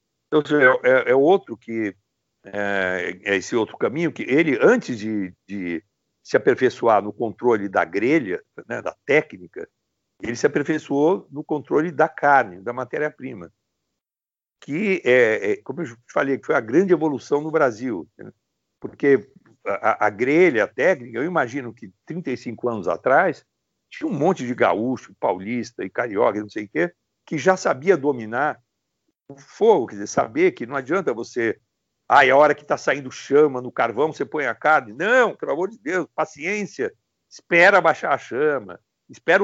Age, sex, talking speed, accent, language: 60-79, male, 170 wpm, Brazilian, Portuguese